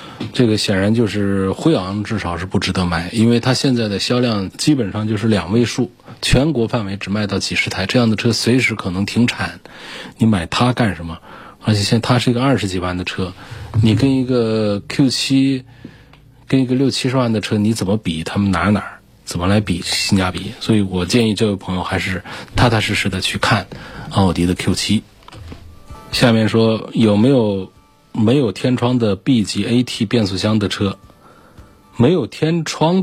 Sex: male